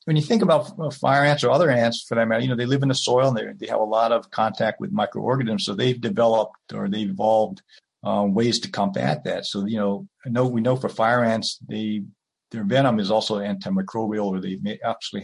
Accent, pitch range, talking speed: American, 110-145 Hz, 230 wpm